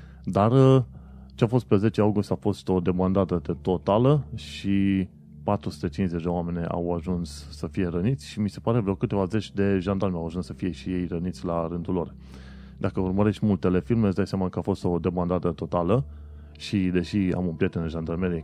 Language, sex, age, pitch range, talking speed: Romanian, male, 30-49, 85-105 Hz, 200 wpm